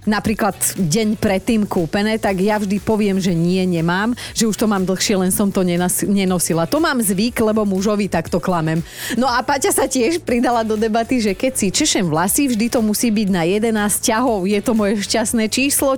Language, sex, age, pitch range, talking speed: Slovak, female, 30-49, 180-240 Hz, 195 wpm